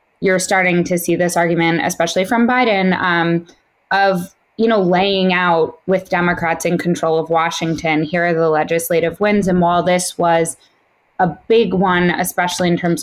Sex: female